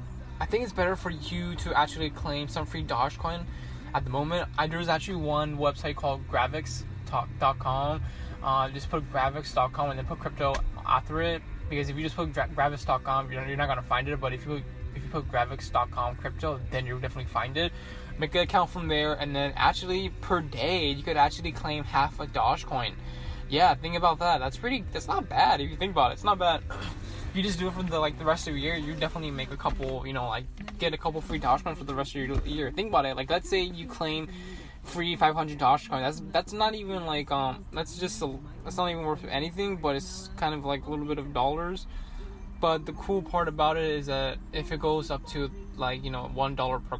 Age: 10-29